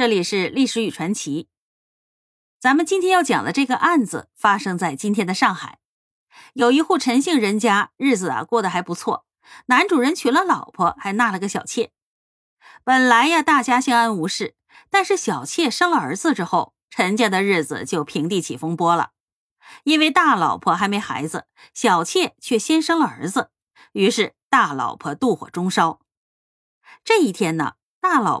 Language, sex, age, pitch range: Chinese, female, 30-49, 205-310 Hz